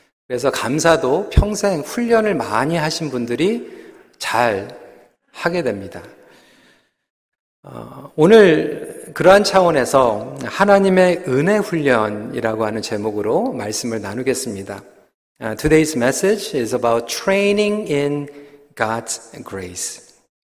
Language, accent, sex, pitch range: Korean, native, male, 125-205 Hz